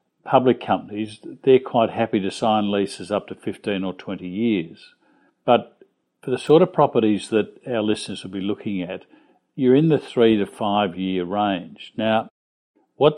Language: English